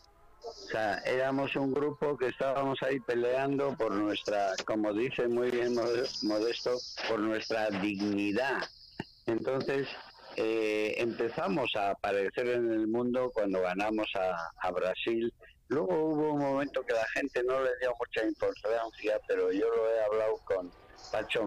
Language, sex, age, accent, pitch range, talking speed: Spanish, male, 60-79, Spanish, 105-145 Hz, 145 wpm